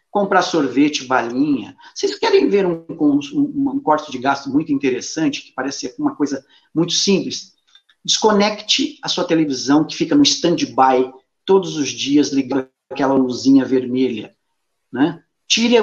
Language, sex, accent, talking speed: Portuguese, male, Brazilian, 145 wpm